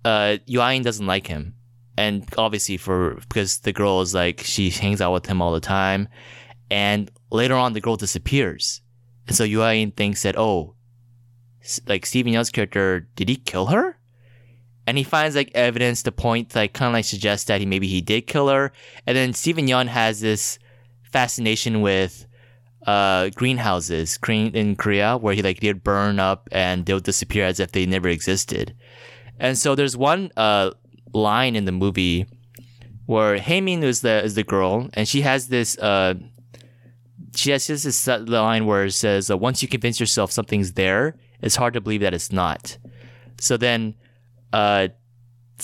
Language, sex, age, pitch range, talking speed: English, male, 20-39, 100-120 Hz, 170 wpm